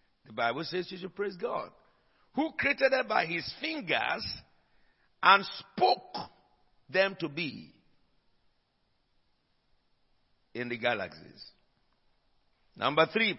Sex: male